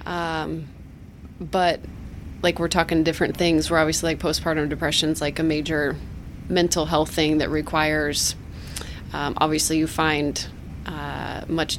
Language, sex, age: English, female, 20-39